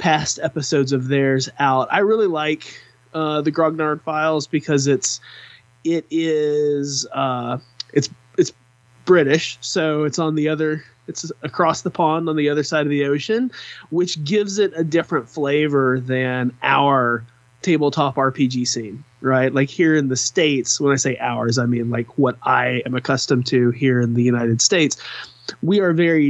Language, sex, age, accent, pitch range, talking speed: English, male, 20-39, American, 130-160 Hz, 165 wpm